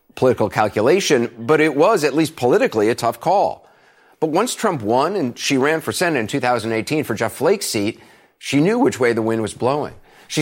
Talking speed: 200 wpm